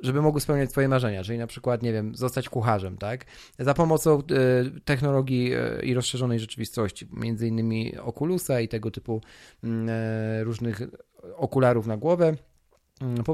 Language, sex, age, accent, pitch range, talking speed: Polish, male, 40-59, native, 110-145 Hz, 135 wpm